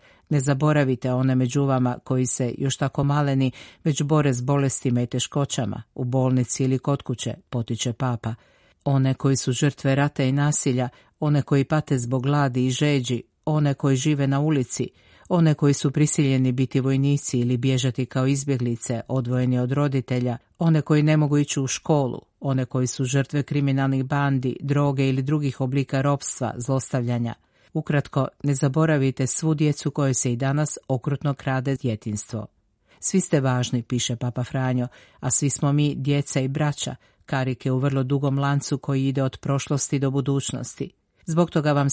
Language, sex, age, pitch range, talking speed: Croatian, female, 50-69, 125-145 Hz, 160 wpm